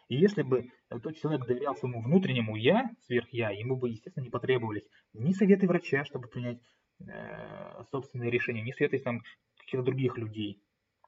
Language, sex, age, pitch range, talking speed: Russian, male, 20-39, 115-135 Hz, 160 wpm